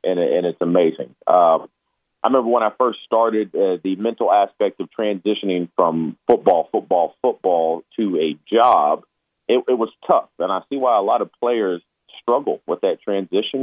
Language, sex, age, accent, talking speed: English, male, 40-59, American, 170 wpm